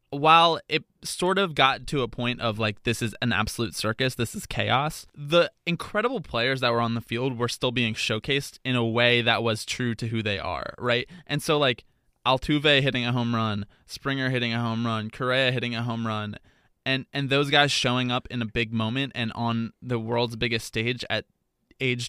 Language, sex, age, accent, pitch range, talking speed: English, male, 20-39, American, 115-140 Hz, 210 wpm